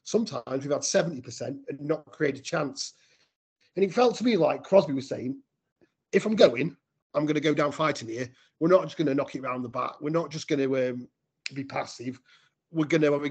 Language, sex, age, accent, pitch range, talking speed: English, male, 30-49, British, 140-170 Hz, 230 wpm